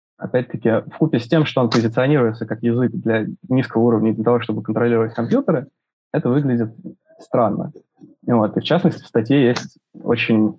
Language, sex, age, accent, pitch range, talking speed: Russian, male, 20-39, native, 115-140 Hz, 160 wpm